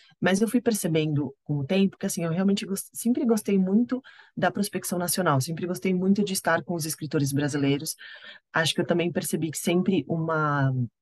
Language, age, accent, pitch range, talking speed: Portuguese, 20-39, Brazilian, 145-185 Hz, 190 wpm